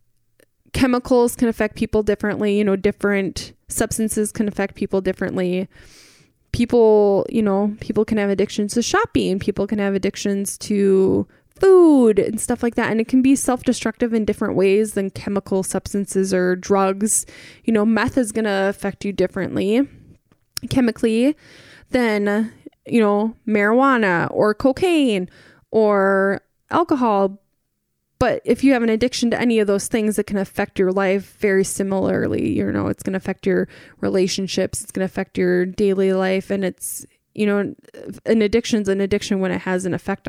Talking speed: 160 wpm